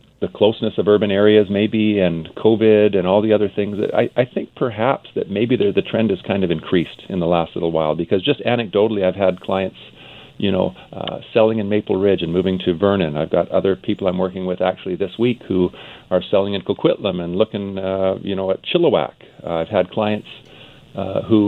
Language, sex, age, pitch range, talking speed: English, male, 50-69, 95-110 Hz, 210 wpm